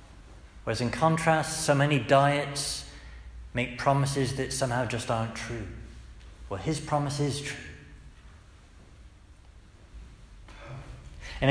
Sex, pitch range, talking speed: male, 100-160 Hz, 100 wpm